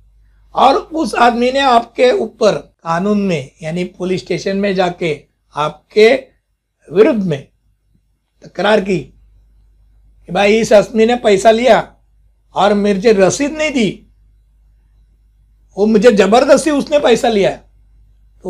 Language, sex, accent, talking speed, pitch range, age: Hindi, male, native, 120 wpm, 170-235 Hz, 60-79